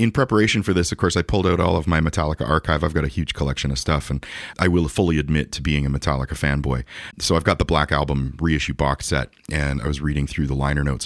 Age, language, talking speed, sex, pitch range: 30-49, English, 260 wpm, male, 75-90 Hz